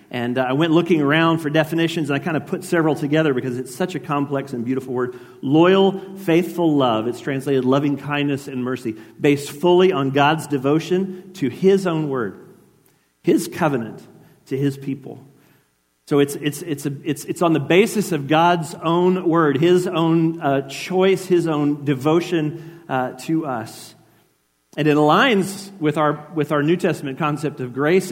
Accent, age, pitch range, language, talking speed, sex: American, 40-59, 130-170 Hz, English, 175 wpm, male